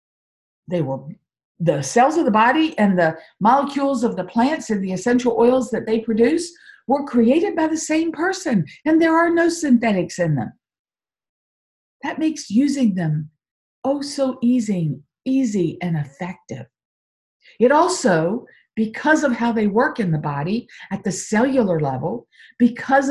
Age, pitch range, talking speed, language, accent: 50-69, 175-255 Hz, 150 wpm, English, American